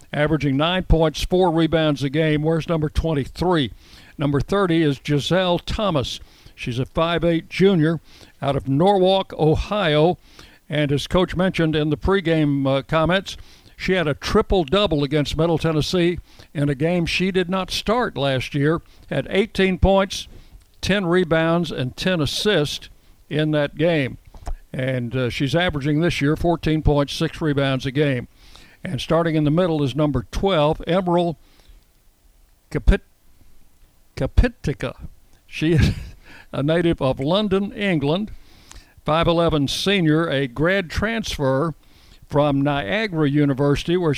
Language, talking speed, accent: English, 135 wpm, American